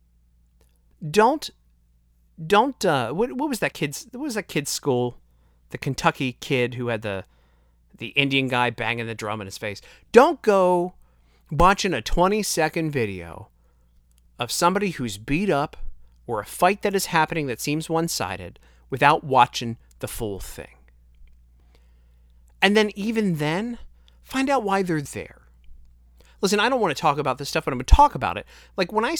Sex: male